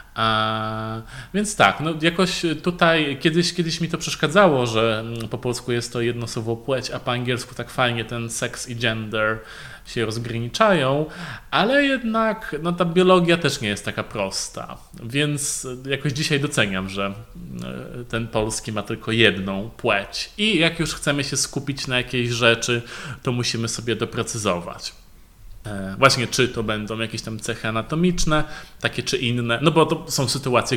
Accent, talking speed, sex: native, 155 wpm, male